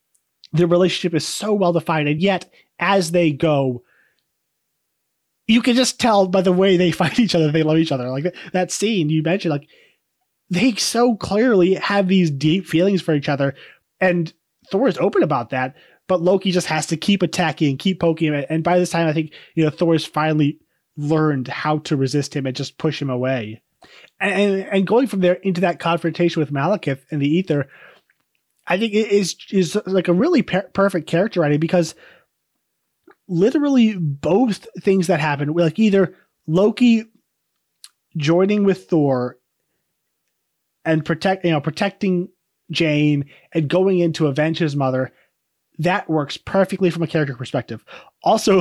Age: 20-39